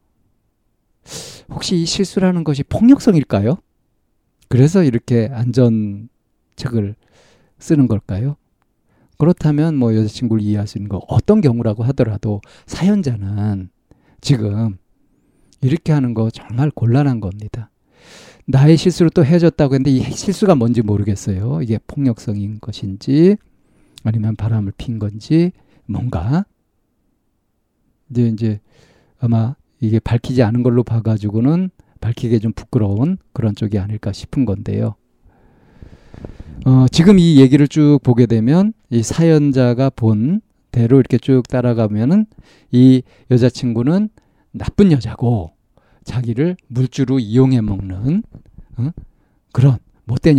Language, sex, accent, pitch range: Korean, male, native, 110-140 Hz